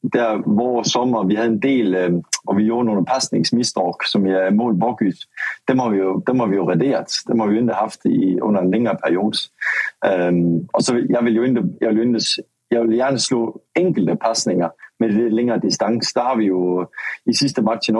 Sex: male